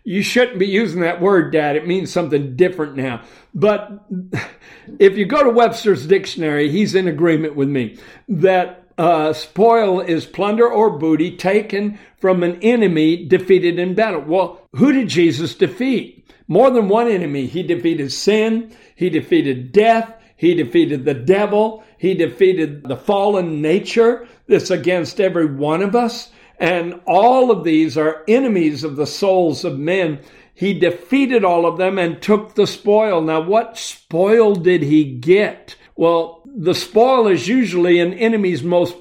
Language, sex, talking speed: English, male, 155 wpm